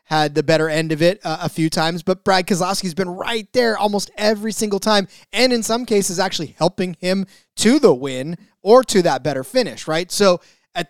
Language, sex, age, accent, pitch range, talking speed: English, male, 20-39, American, 160-205 Hz, 215 wpm